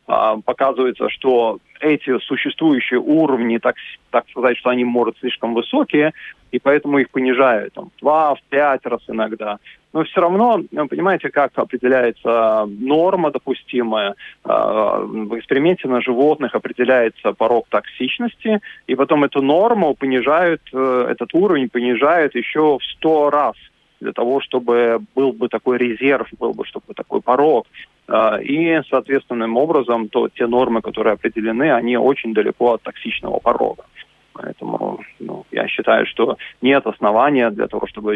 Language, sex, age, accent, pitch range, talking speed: Russian, male, 20-39, native, 115-140 Hz, 130 wpm